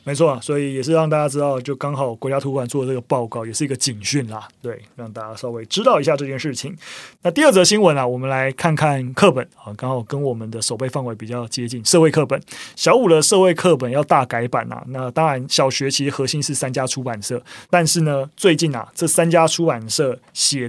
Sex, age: male, 20-39